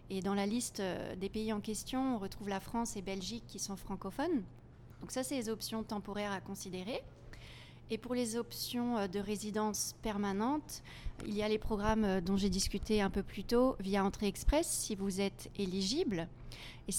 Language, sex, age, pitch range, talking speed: French, female, 30-49, 195-225 Hz, 185 wpm